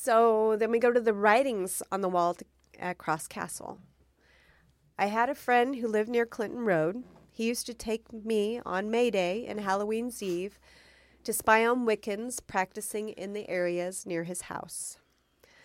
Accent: American